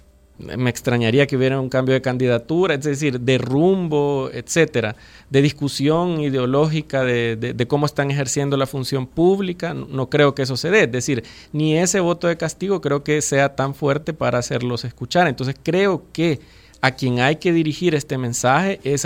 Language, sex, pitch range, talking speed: Spanish, male, 125-160 Hz, 180 wpm